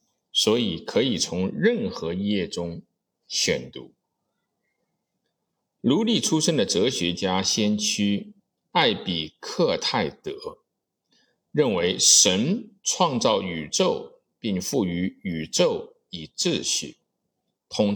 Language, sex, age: Chinese, male, 50-69